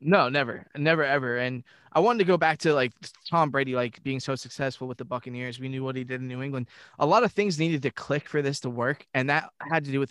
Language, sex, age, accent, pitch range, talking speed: English, male, 20-39, American, 130-155 Hz, 275 wpm